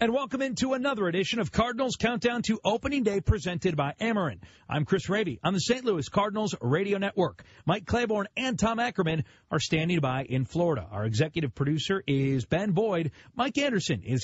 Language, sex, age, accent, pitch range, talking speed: English, male, 40-59, American, 145-205 Hz, 180 wpm